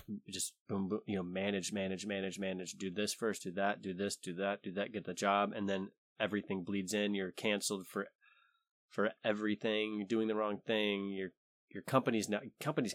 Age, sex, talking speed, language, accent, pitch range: 20-39, male, 200 wpm, English, American, 95-110 Hz